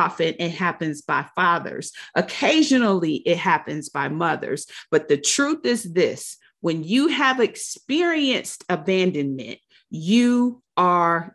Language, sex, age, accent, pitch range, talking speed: English, female, 40-59, American, 175-245 Hz, 115 wpm